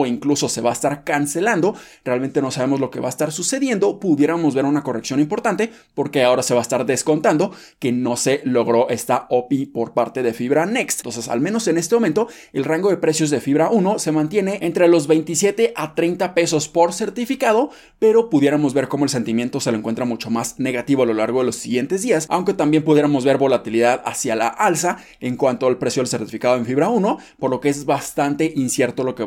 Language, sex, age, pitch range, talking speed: Spanish, male, 20-39, 125-165 Hz, 215 wpm